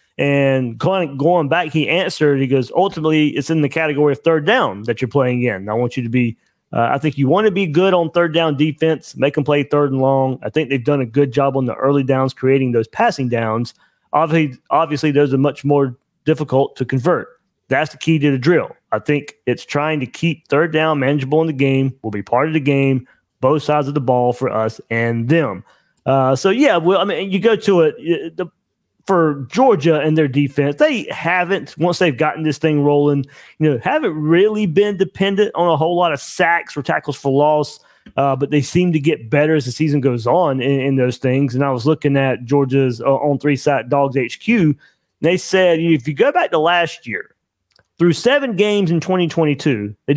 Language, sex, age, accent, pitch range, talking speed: English, male, 30-49, American, 135-170 Hz, 225 wpm